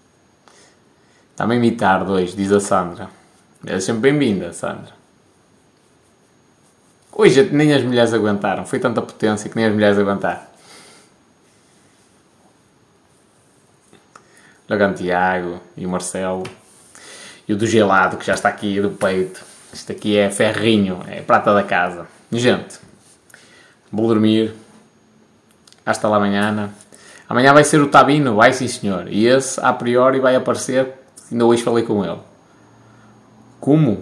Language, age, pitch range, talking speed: Portuguese, 20-39, 105-135 Hz, 130 wpm